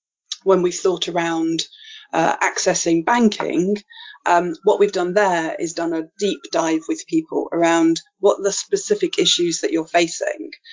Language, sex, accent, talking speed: English, female, British, 150 wpm